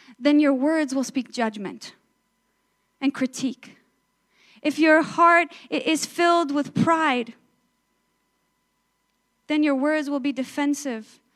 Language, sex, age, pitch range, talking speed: English, female, 10-29, 250-310 Hz, 110 wpm